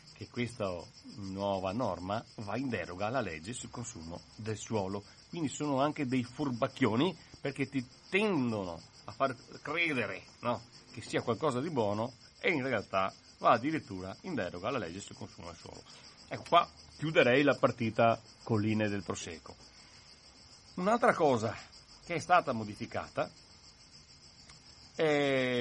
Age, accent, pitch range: 40-59, native, 100-135 Hz